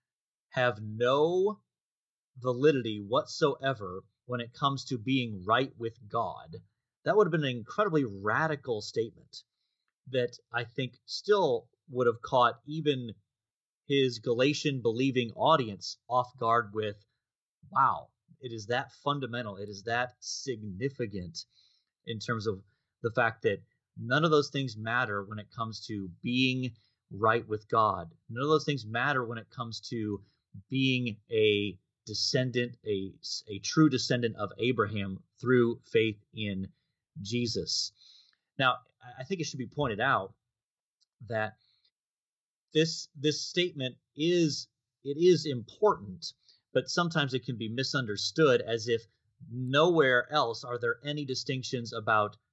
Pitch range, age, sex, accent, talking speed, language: 110-140 Hz, 30-49, male, American, 130 wpm, English